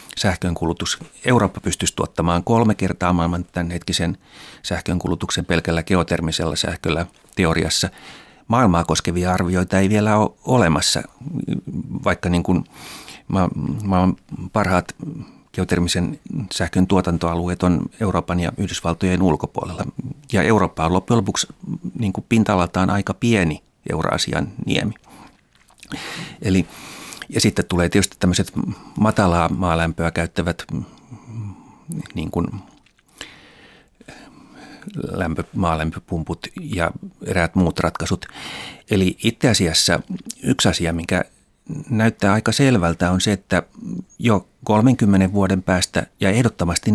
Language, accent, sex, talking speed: Finnish, native, male, 100 wpm